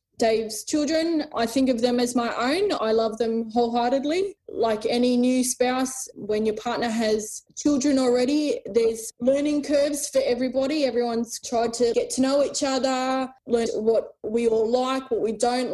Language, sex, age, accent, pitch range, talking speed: English, female, 20-39, Australian, 225-260 Hz, 170 wpm